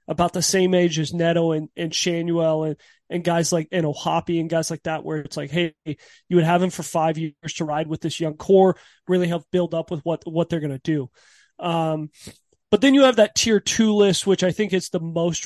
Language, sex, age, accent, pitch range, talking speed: English, male, 30-49, American, 160-185 Hz, 240 wpm